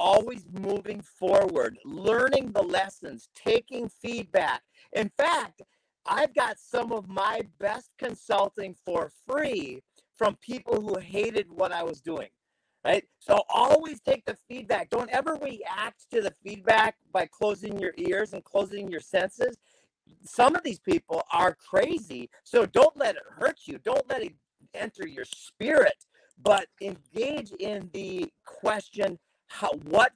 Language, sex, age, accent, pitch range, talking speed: English, male, 40-59, American, 195-270 Hz, 140 wpm